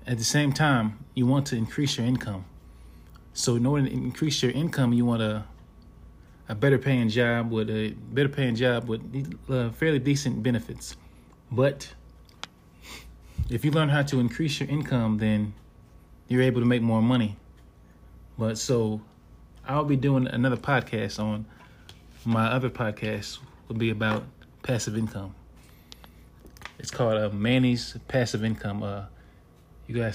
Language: English